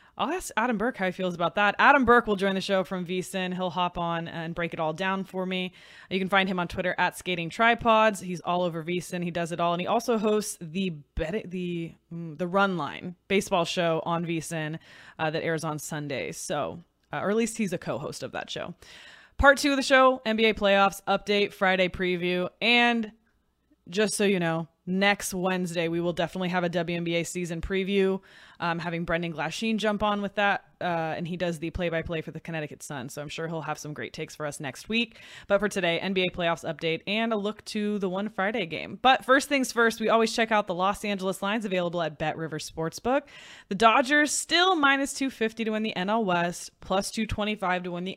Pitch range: 170-210 Hz